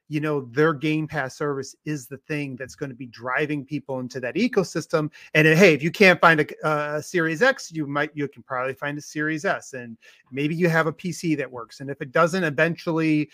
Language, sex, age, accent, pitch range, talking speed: English, male, 30-49, American, 140-180 Hz, 225 wpm